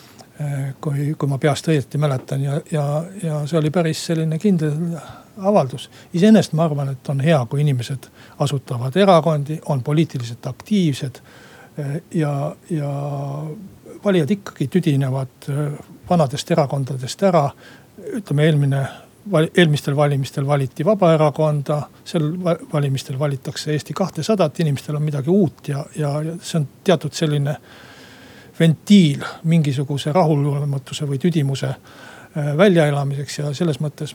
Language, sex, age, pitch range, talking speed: Finnish, male, 60-79, 145-165 Hz, 120 wpm